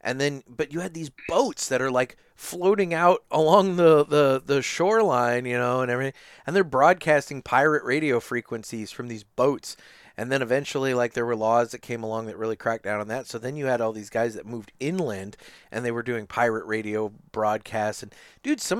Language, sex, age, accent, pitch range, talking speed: English, male, 30-49, American, 110-150 Hz, 210 wpm